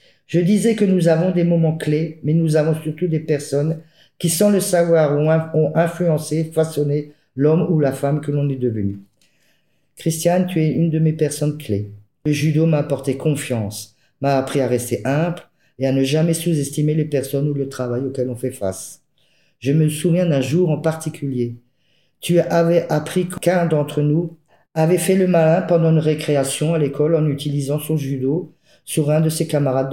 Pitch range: 130-160 Hz